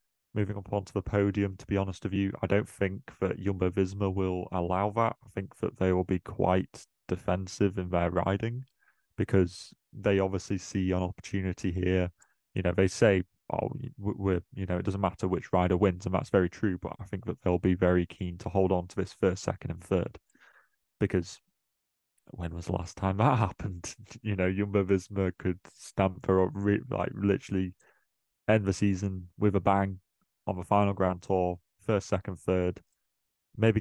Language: English